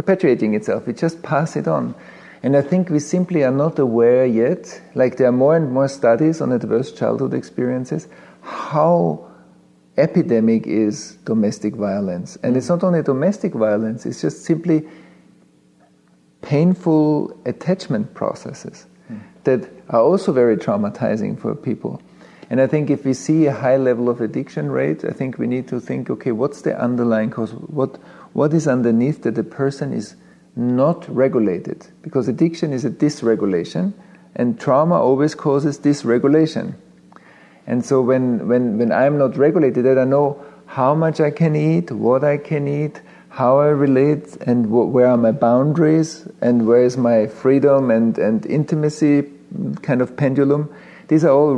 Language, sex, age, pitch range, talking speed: English, male, 50-69, 120-155 Hz, 160 wpm